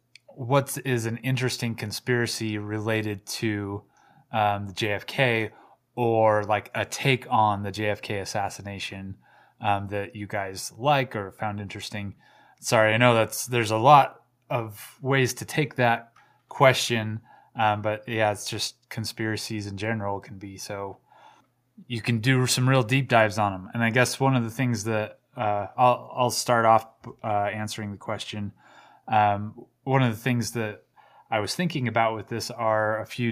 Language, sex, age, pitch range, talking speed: English, male, 20-39, 105-120 Hz, 165 wpm